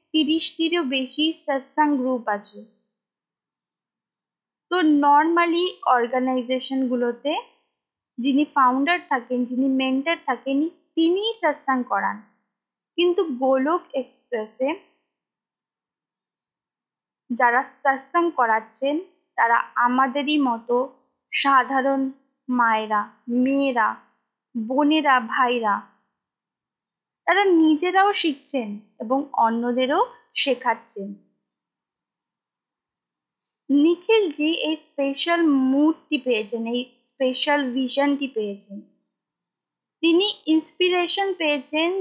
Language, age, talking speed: Bengali, 20-39, 55 wpm